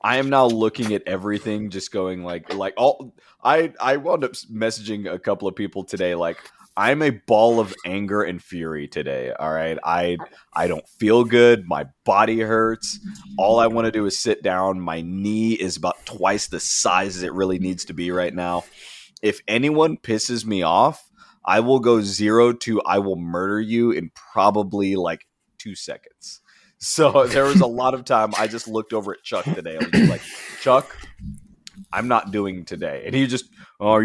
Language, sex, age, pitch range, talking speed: English, male, 20-39, 95-120 Hz, 190 wpm